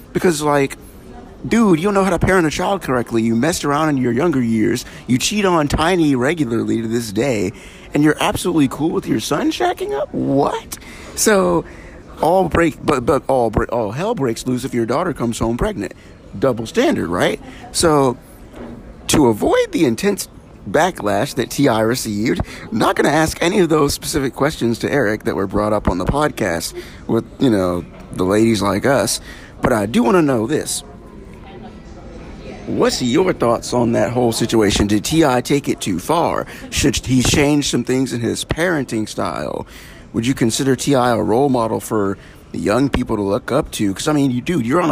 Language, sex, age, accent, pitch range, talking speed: English, male, 50-69, American, 110-150 Hz, 185 wpm